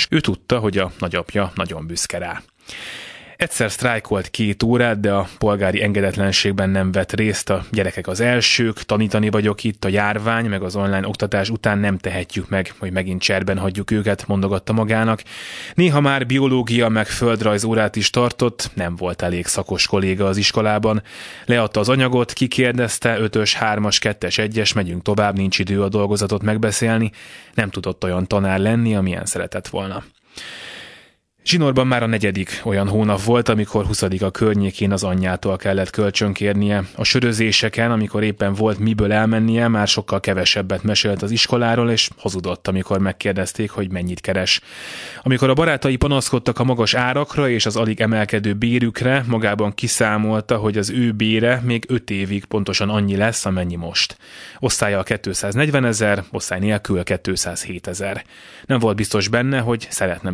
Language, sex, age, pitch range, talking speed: Hungarian, male, 20-39, 95-115 Hz, 155 wpm